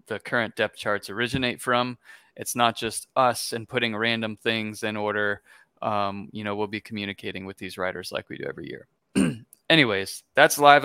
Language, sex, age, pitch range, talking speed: English, male, 20-39, 105-120 Hz, 175 wpm